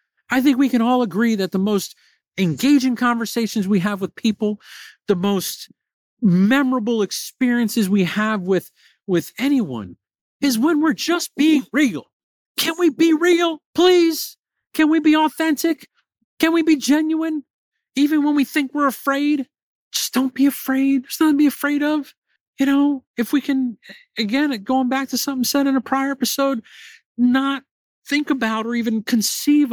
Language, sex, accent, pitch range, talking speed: English, male, American, 225-295 Hz, 160 wpm